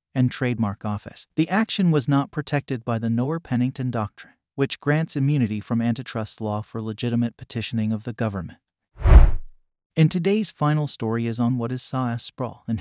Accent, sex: American, male